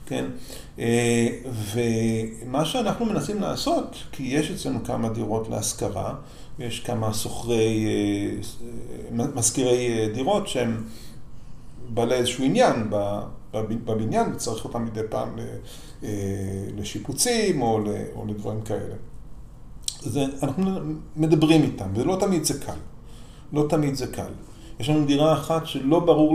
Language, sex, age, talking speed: Hebrew, male, 40-59, 100 wpm